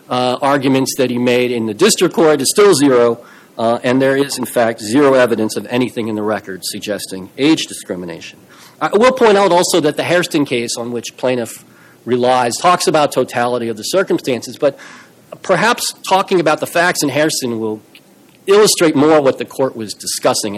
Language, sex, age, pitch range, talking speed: English, male, 40-59, 120-175 Hz, 185 wpm